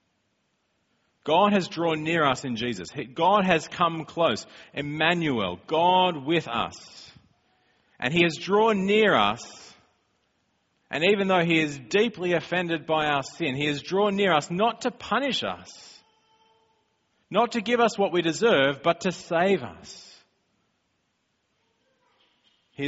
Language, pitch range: English, 145-185 Hz